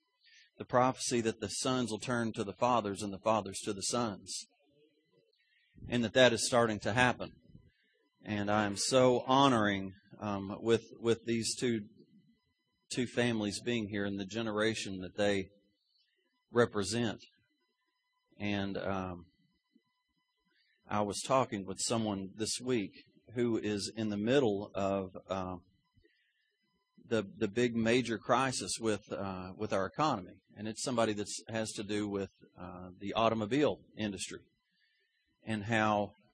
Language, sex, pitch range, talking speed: English, male, 100-125 Hz, 135 wpm